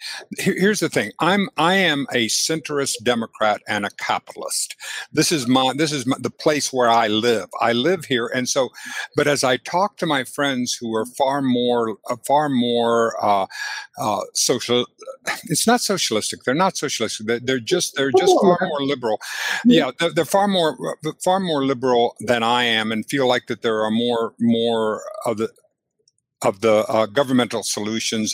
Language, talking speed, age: English, 180 wpm, 60-79